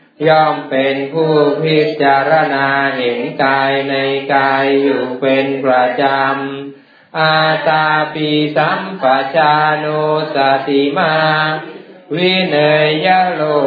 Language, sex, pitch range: Thai, male, 135-155 Hz